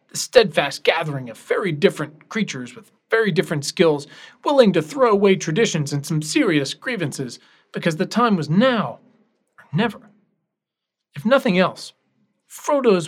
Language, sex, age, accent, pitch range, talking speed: English, male, 40-59, American, 155-210 Hz, 140 wpm